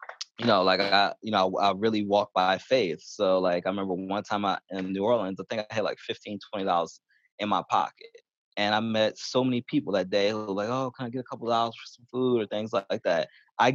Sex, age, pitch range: male, 20-39, 95-115 Hz